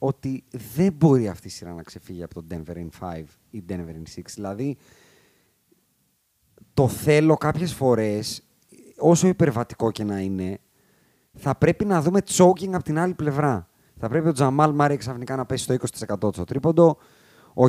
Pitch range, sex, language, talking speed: 115-170 Hz, male, Greek, 165 wpm